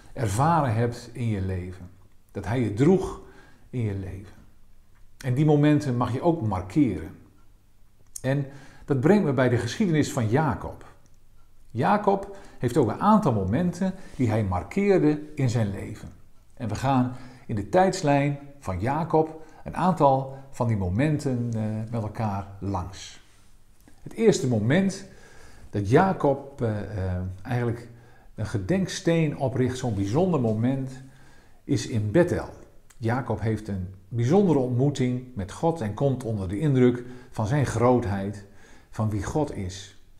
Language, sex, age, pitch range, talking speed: Dutch, male, 50-69, 105-145 Hz, 135 wpm